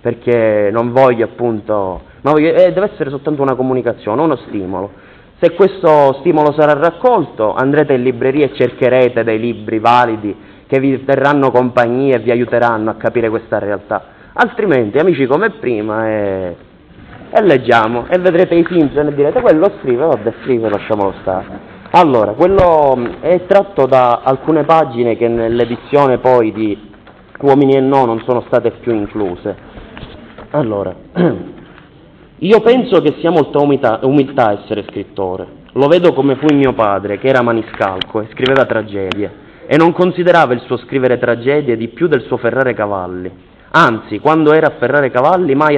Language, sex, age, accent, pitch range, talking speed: Italian, male, 30-49, native, 110-150 Hz, 155 wpm